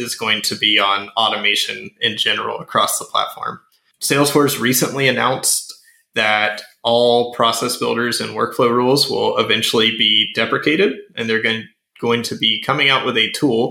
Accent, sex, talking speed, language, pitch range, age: American, male, 155 wpm, English, 110-125 Hz, 20-39